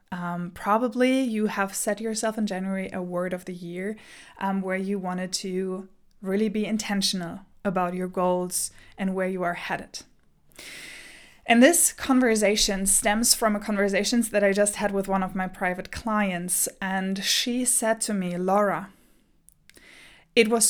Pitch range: 195-255 Hz